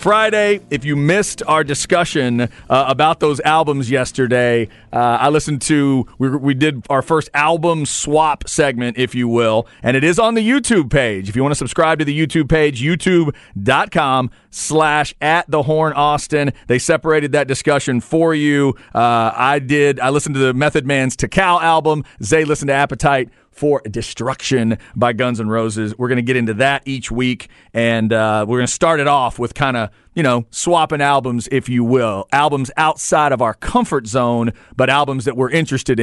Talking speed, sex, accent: 185 wpm, male, American